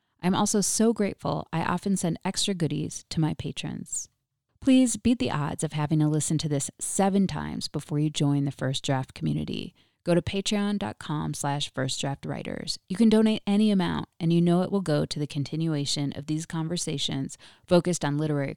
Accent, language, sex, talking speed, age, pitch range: American, English, female, 180 wpm, 30-49, 145-200 Hz